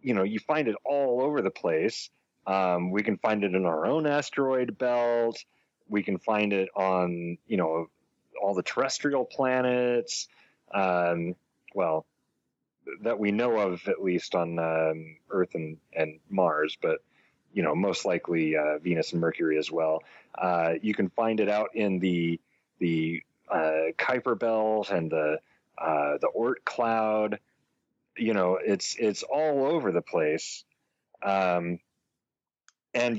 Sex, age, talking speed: male, 30-49, 150 wpm